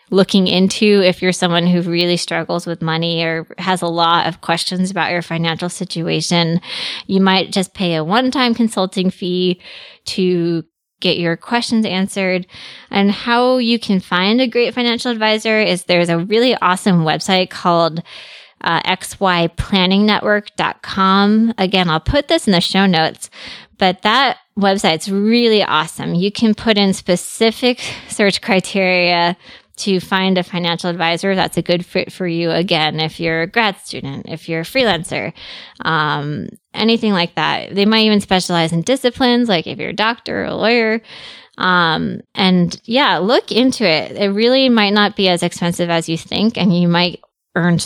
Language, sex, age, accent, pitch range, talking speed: English, female, 20-39, American, 175-215 Hz, 165 wpm